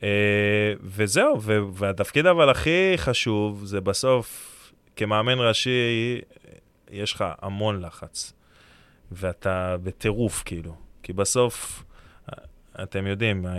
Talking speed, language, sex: 90 wpm, Hebrew, male